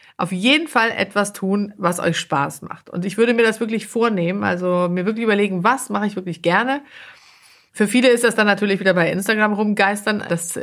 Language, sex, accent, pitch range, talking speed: German, female, German, 175-215 Hz, 205 wpm